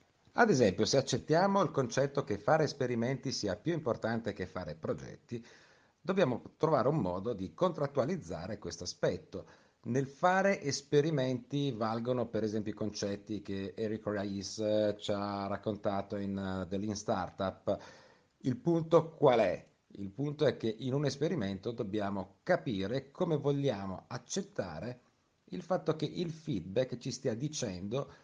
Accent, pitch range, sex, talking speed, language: native, 100-140 Hz, male, 140 wpm, Italian